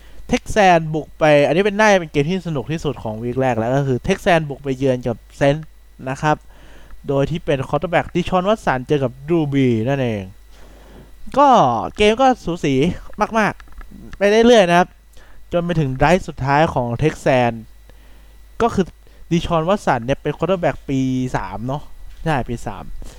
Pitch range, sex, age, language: 115-175 Hz, male, 20-39, Thai